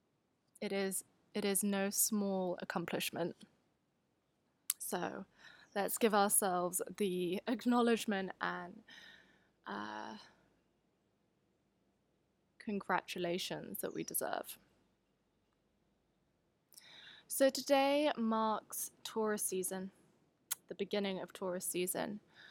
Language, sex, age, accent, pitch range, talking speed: English, female, 20-39, British, 185-215 Hz, 75 wpm